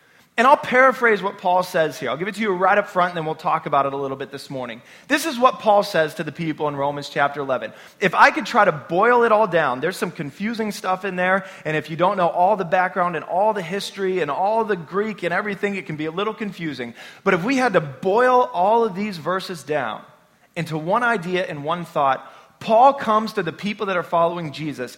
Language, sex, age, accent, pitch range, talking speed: English, male, 20-39, American, 150-215 Hz, 245 wpm